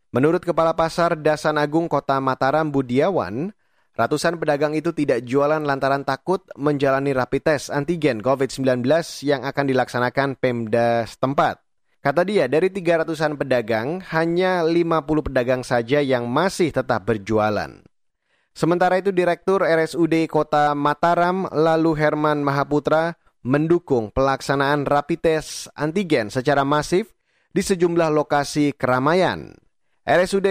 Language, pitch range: Indonesian, 135-170 Hz